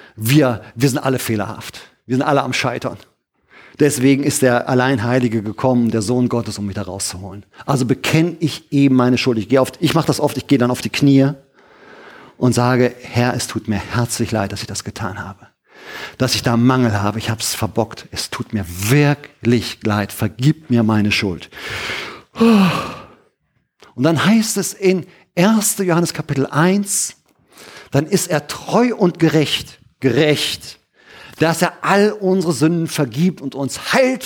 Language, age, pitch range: German, 50-69, 120-180 Hz